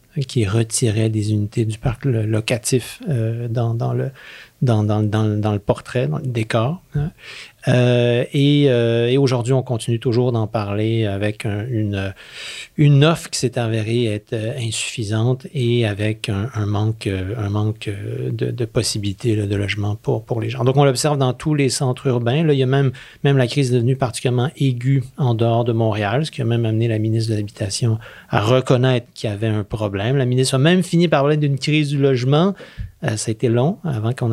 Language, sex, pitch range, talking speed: French, male, 110-135 Hz, 195 wpm